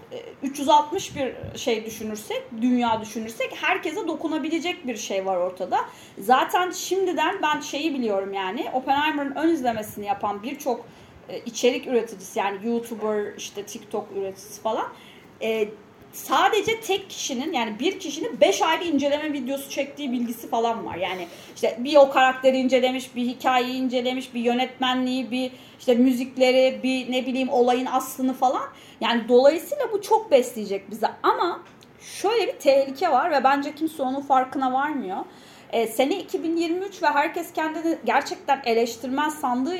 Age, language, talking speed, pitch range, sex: 30-49, Turkish, 140 wpm, 230-315 Hz, female